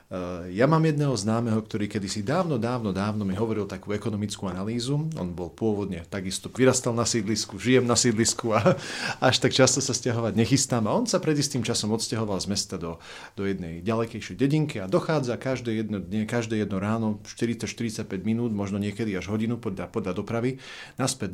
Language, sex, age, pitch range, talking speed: Slovak, male, 40-59, 100-130 Hz, 175 wpm